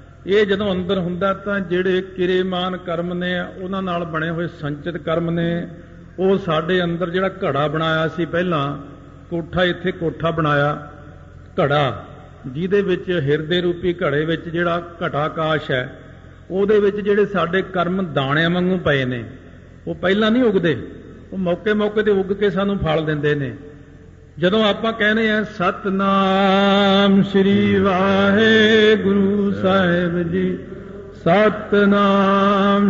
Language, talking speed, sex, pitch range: Punjabi, 135 wpm, male, 165-195 Hz